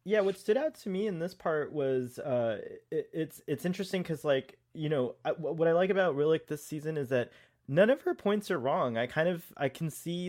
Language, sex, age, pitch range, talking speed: English, male, 20-39, 125-155 Hz, 230 wpm